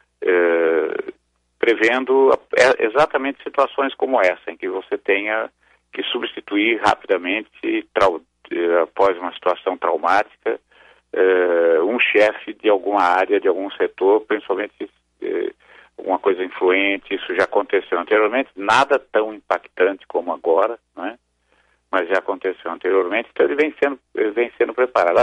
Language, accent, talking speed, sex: Portuguese, Brazilian, 115 wpm, male